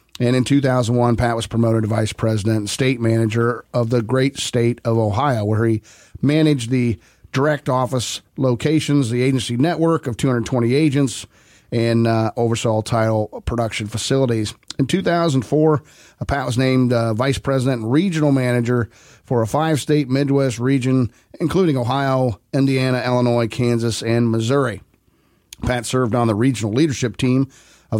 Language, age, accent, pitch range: English, 40-59, American, 115-140 Hz